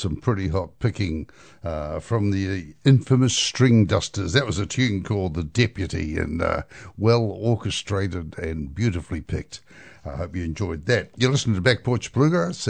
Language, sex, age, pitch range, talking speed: English, male, 60-79, 95-120 Hz, 165 wpm